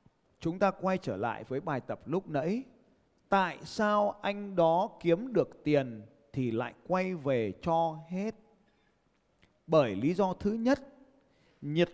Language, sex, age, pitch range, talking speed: Vietnamese, male, 20-39, 145-205 Hz, 145 wpm